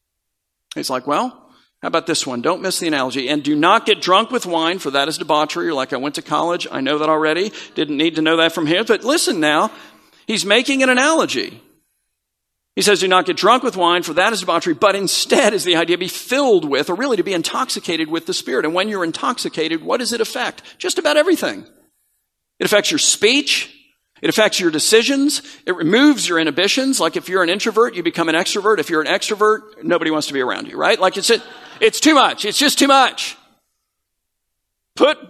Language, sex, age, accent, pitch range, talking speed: English, male, 50-69, American, 165-265 Hz, 215 wpm